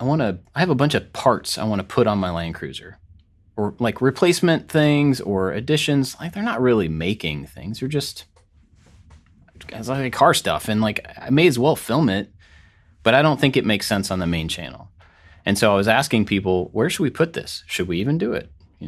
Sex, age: male, 30-49